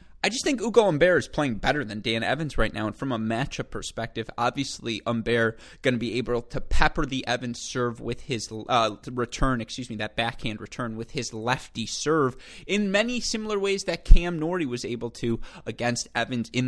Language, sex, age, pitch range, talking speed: English, male, 20-39, 115-135 Hz, 200 wpm